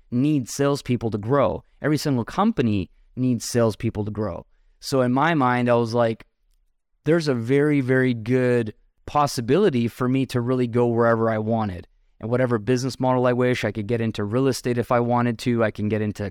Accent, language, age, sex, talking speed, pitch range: American, English, 20-39, male, 190 wpm, 115-140 Hz